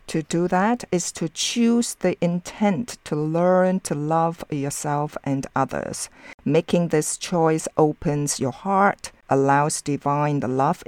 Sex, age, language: female, 50-69, English